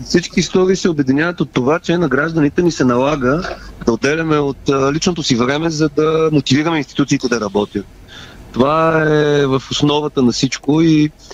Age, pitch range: 30-49, 125-165 Hz